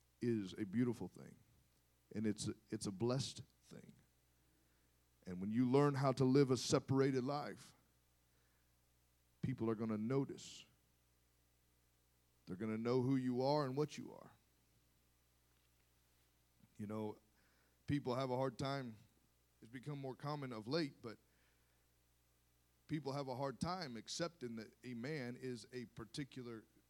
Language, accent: English, American